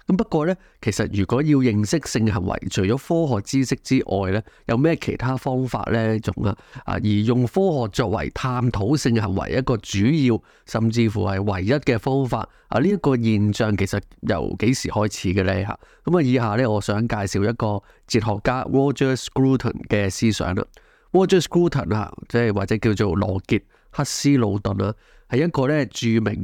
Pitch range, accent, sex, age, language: 100-125 Hz, native, male, 20-39, Chinese